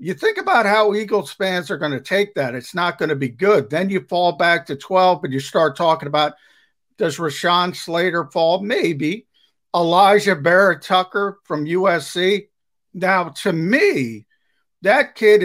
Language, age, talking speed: English, 50-69, 165 wpm